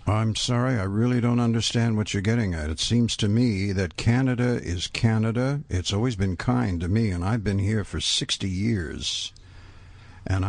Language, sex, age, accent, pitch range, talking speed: English, male, 60-79, American, 95-115 Hz, 185 wpm